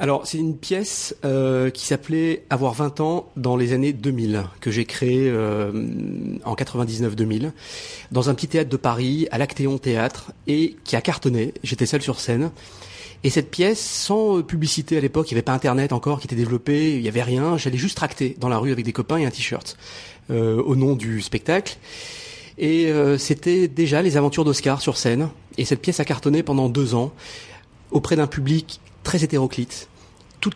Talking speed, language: 190 wpm, French